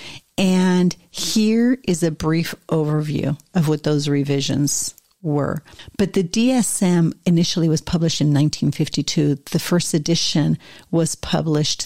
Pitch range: 150-185 Hz